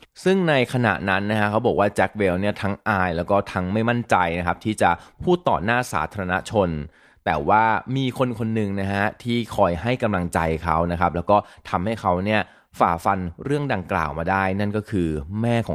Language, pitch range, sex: Thai, 90-115 Hz, male